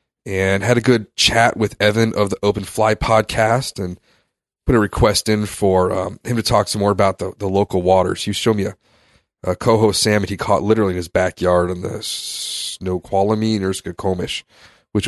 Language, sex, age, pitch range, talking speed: English, male, 30-49, 95-110 Hz, 190 wpm